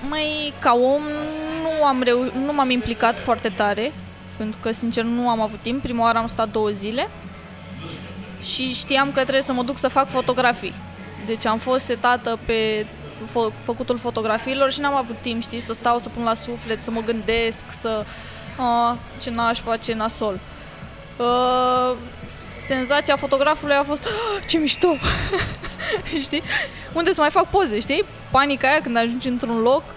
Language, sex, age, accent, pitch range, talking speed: Romanian, female, 20-39, native, 230-270 Hz, 170 wpm